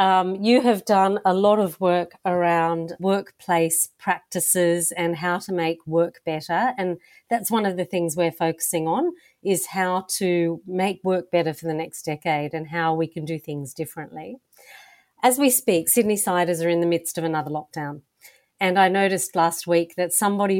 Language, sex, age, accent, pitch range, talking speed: English, female, 40-59, Australian, 170-215 Hz, 180 wpm